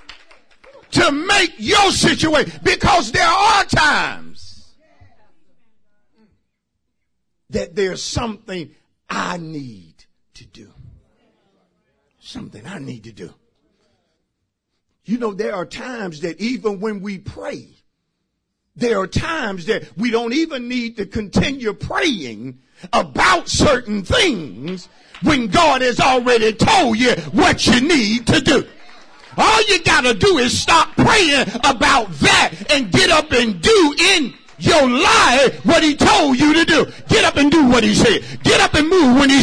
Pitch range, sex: 215-315 Hz, male